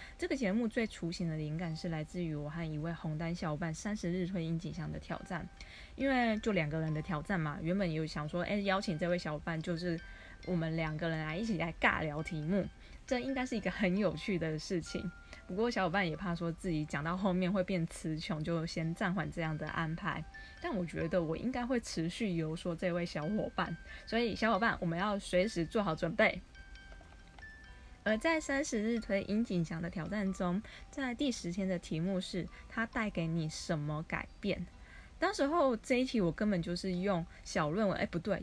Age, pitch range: 20-39, 160-200 Hz